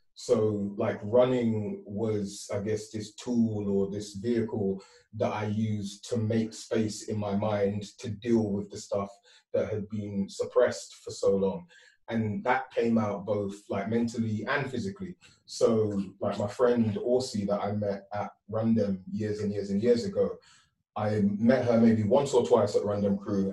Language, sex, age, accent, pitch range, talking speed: English, male, 30-49, British, 100-120 Hz, 170 wpm